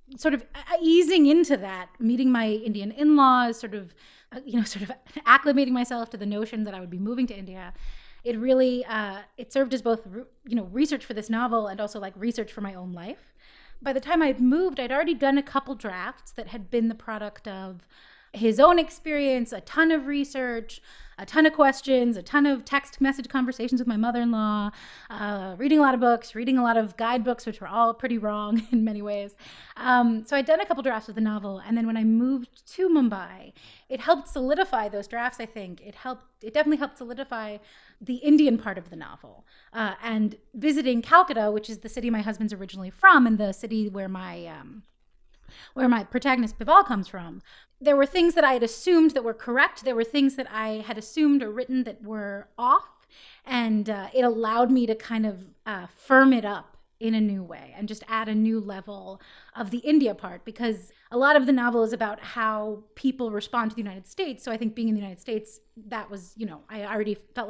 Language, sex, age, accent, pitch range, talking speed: English, female, 30-49, American, 215-265 Hz, 215 wpm